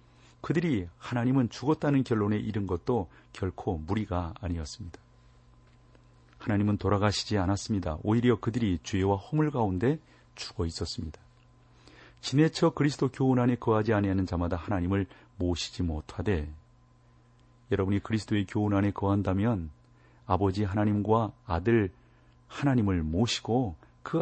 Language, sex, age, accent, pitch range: Korean, male, 40-59, native, 80-115 Hz